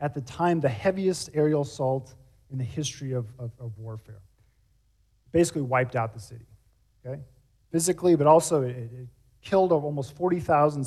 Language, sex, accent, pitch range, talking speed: English, male, American, 115-155 Hz, 155 wpm